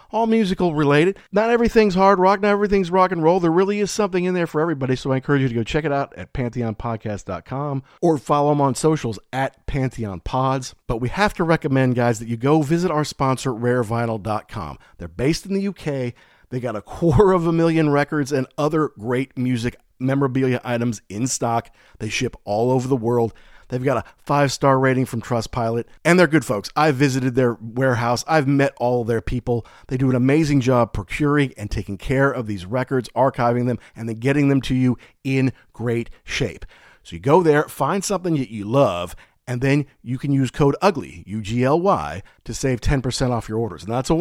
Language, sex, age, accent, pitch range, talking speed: English, male, 40-59, American, 120-155 Hz, 200 wpm